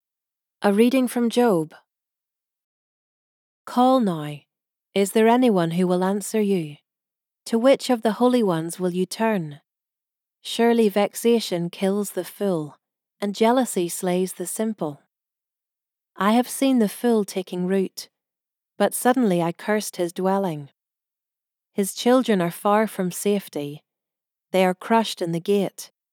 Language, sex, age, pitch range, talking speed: English, female, 40-59, 180-220 Hz, 130 wpm